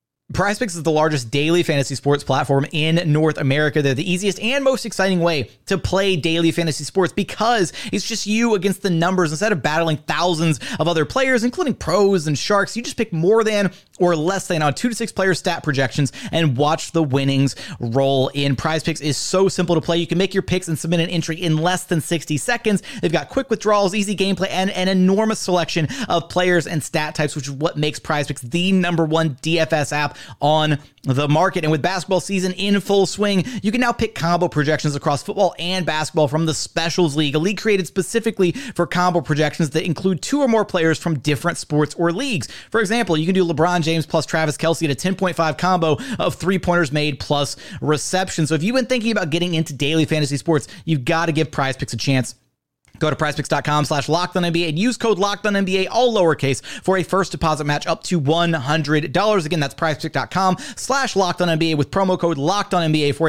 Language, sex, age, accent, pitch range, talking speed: English, male, 30-49, American, 150-190 Hz, 215 wpm